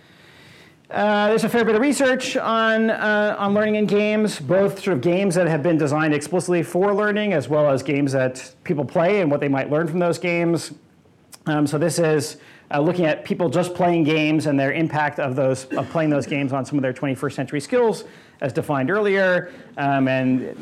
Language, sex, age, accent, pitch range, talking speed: English, male, 40-59, American, 135-180 Hz, 210 wpm